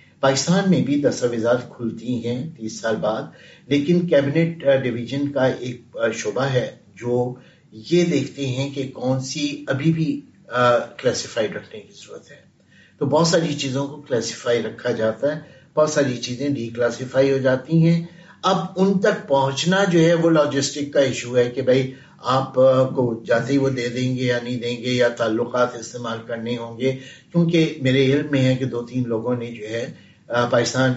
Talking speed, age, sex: 175 wpm, 60-79, male